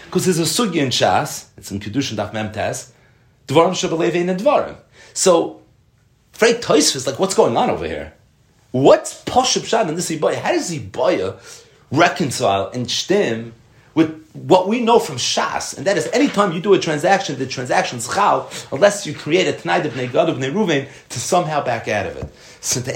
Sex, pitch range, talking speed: male, 120-175 Hz, 190 wpm